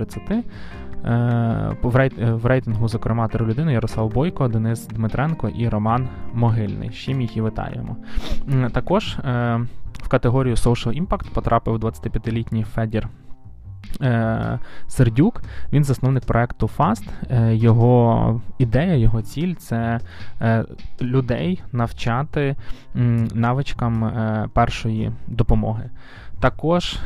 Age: 20-39